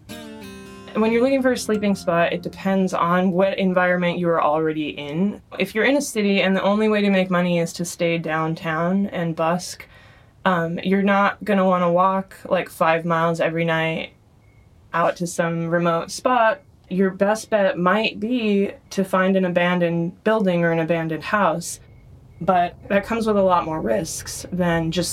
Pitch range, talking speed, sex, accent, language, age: 165-195 Hz, 180 wpm, female, American, English, 20-39